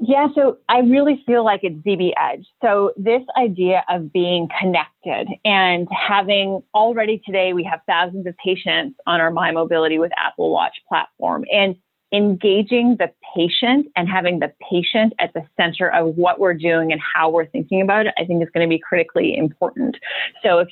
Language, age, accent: English, 30-49, American